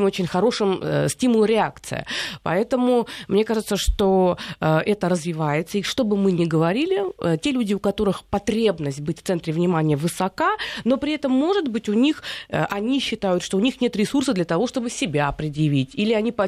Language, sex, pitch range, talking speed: Russian, female, 175-230 Hz, 190 wpm